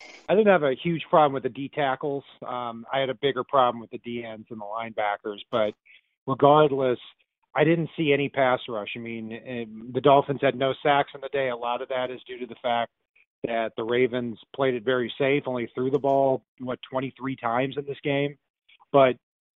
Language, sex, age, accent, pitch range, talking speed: English, male, 40-59, American, 120-140 Hz, 210 wpm